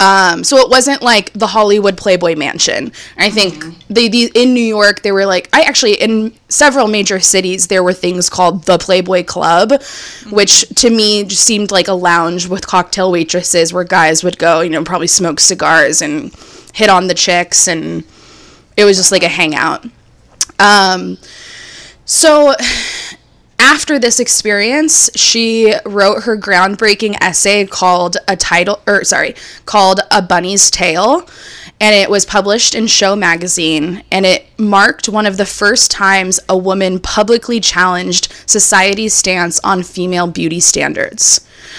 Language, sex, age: English, female, 20-39